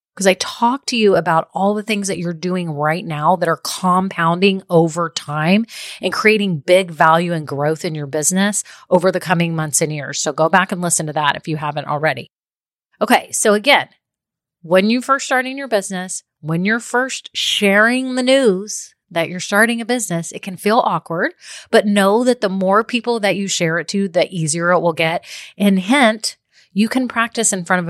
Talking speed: 200 wpm